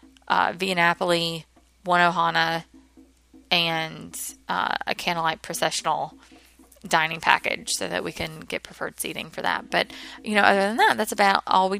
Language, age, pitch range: English, 20-39, 170-215 Hz